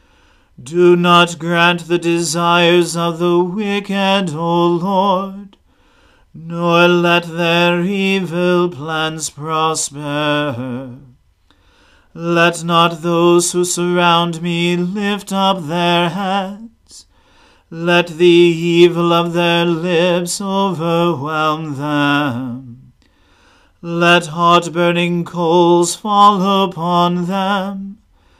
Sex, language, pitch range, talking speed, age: male, English, 170-175 Hz, 85 wpm, 40-59